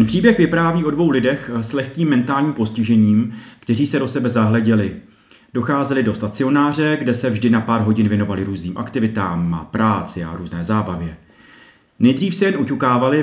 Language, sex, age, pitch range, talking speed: Czech, male, 30-49, 105-130 Hz, 165 wpm